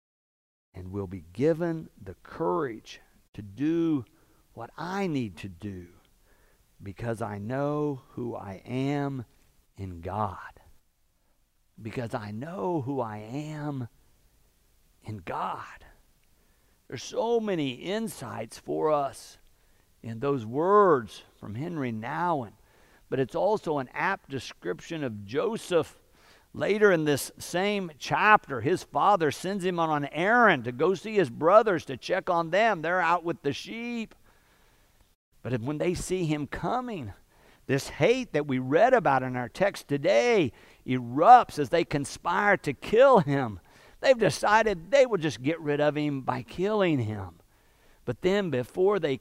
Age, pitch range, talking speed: 50-69, 120-185 Hz, 140 wpm